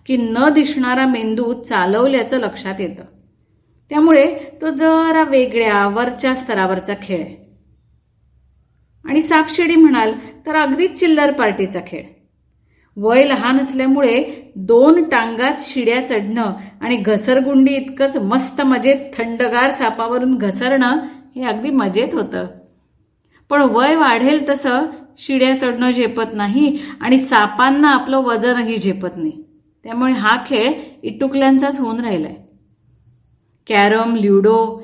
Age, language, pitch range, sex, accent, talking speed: 30-49, Marathi, 210-275 Hz, female, native, 110 wpm